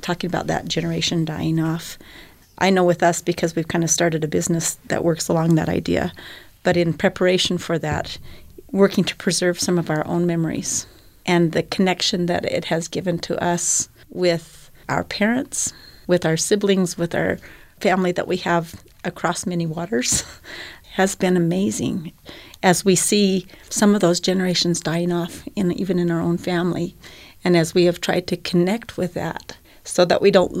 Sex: female